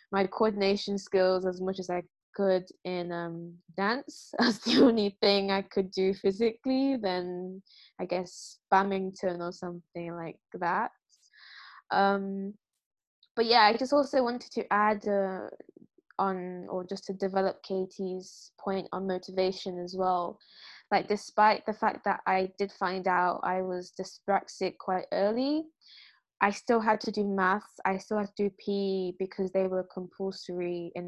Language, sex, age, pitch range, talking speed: English, female, 10-29, 185-215 Hz, 155 wpm